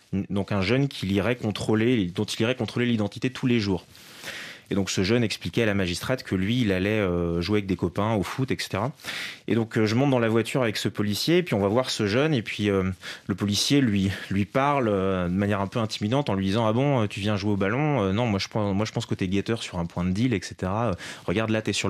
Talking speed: 250 wpm